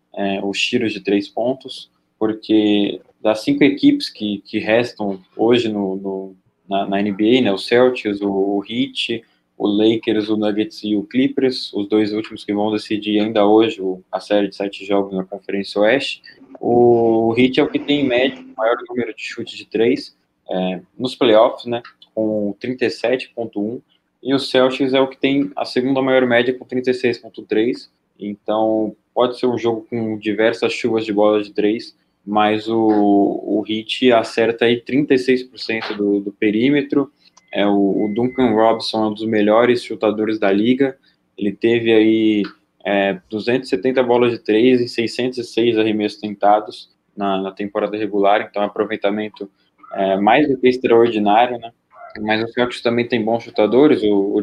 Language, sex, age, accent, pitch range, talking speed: Portuguese, male, 20-39, Brazilian, 100-120 Hz, 165 wpm